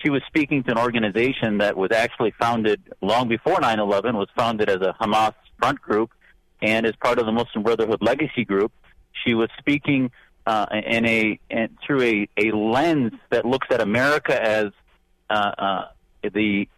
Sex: male